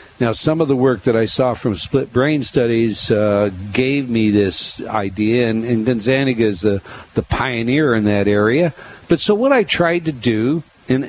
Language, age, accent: English, 60-79, American